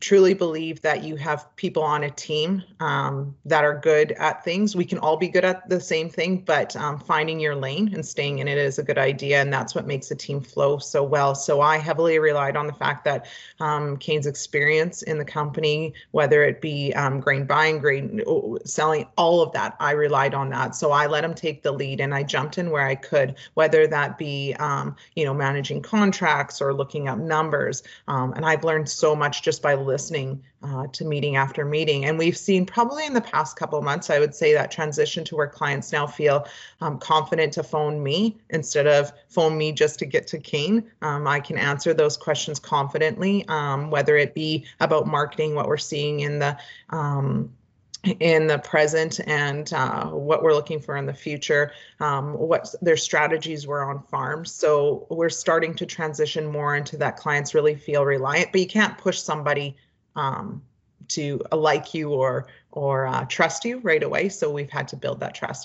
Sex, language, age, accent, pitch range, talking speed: female, English, 30-49, American, 145-160 Hz, 205 wpm